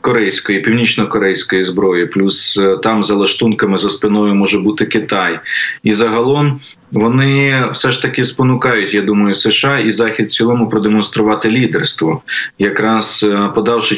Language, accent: Ukrainian, native